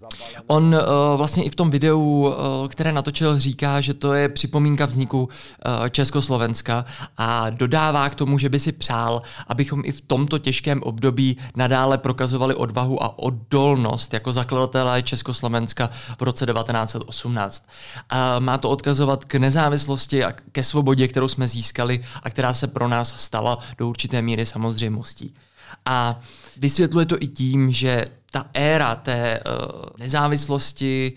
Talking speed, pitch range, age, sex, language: 140 wpm, 120-140 Hz, 20-39, male, Czech